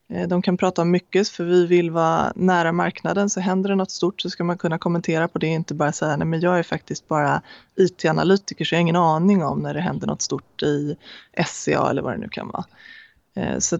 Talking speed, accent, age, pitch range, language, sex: 235 wpm, native, 20-39, 165-200 Hz, Swedish, female